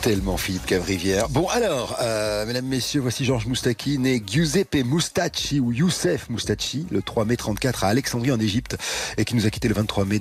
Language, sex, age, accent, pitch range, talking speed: French, male, 40-59, French, 95-120 Hz, 195 wpm